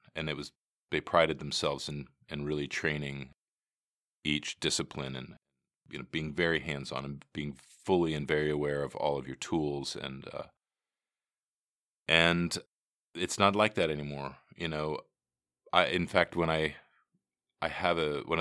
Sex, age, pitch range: male, 40-59, 70-80 Hz